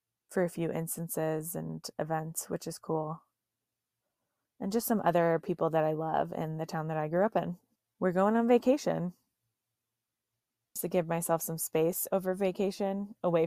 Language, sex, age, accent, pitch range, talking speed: English, female, 20-39, American, 155-180 Hz, 170 wpm